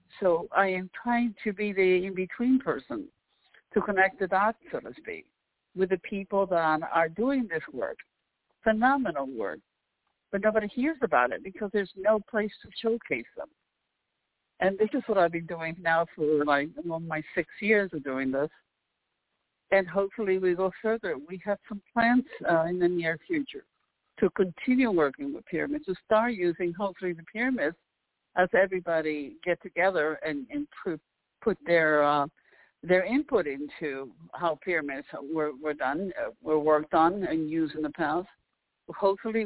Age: 60-79